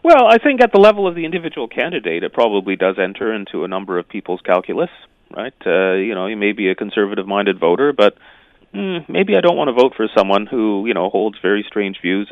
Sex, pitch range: male, 95-130 Hz